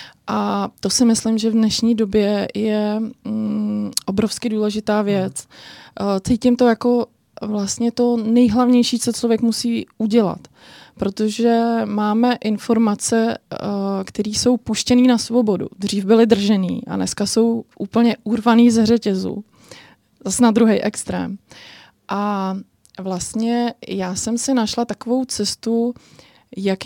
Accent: native